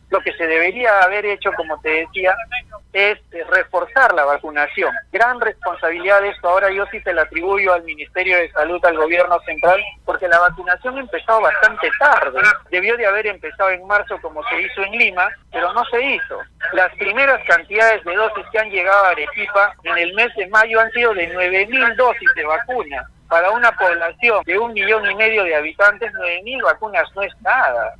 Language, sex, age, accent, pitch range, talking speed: Spanish, male, 40-59, Argentinian, 170-220 Hz, 190 wpm